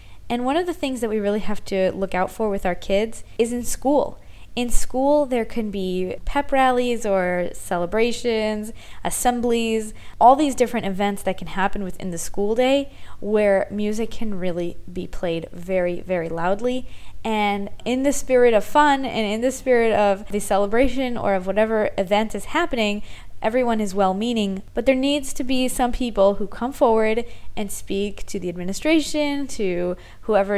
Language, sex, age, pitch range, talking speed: English, female, 20-39, 195-245 Hz, 175 wpm